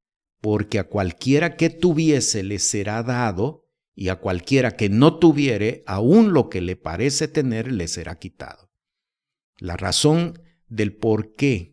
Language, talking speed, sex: Spanish, 145 wpm, male